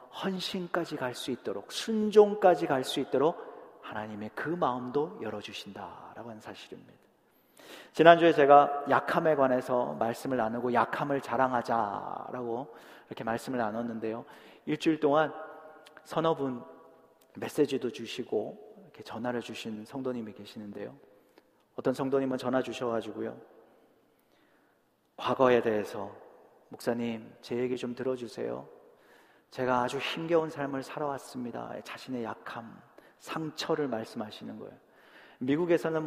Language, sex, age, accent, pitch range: Korean, male, 40-59, native, 120-150 Hz